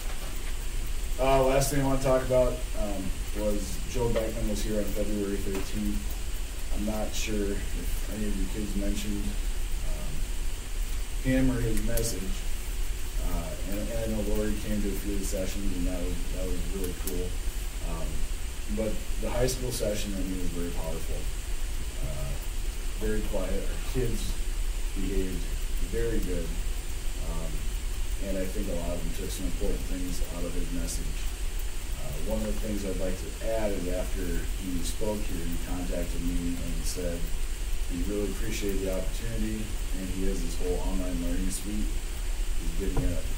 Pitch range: 85-100 Hz